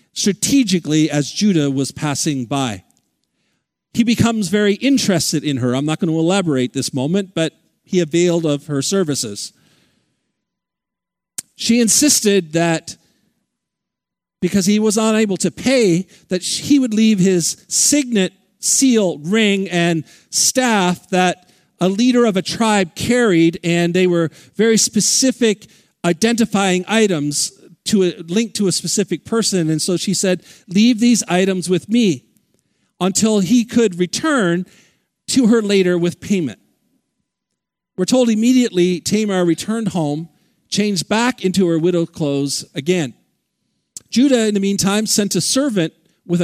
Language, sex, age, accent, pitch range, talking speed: English, male, 50-69, American, 170-215 Hz, 135 wpm